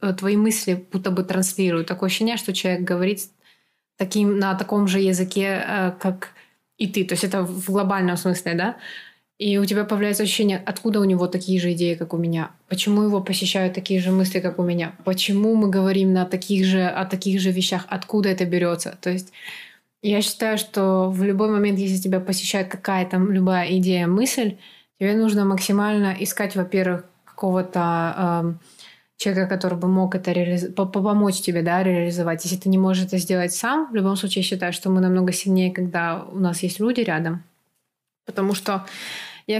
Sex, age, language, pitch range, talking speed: female, 20-39, Russian, 185-200 Hz, 170 wpm